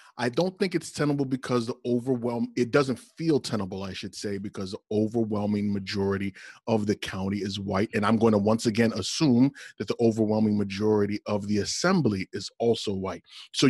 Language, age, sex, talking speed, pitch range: English, 30-49, male, 185 wpm, 105-135 Hz